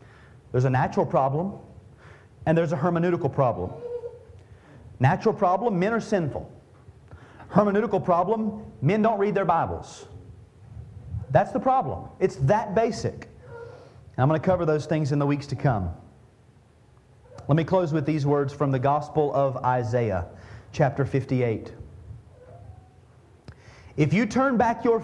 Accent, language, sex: American, English, male